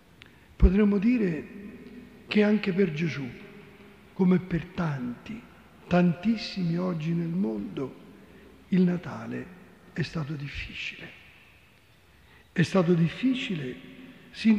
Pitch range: 160-200 Hz